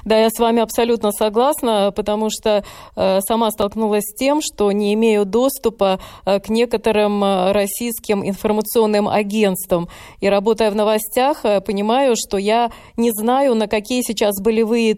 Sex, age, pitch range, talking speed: female, 20-39, 200-225 Hz, 135 wpm